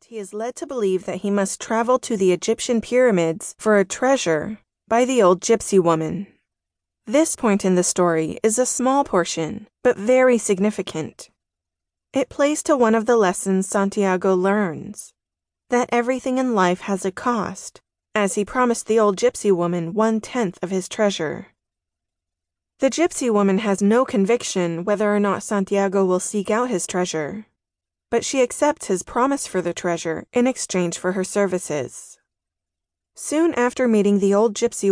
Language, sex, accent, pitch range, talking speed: English, female, American, 180-235 Hz, 165 wpm